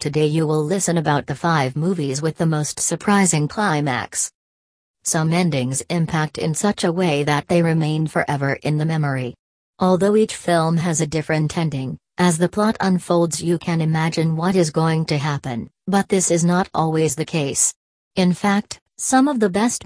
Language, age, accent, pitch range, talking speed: English, 40-59, American, 150-180 Hz, 180 wpm